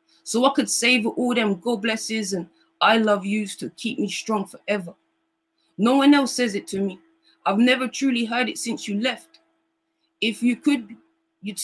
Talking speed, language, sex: 185 wpm, English, female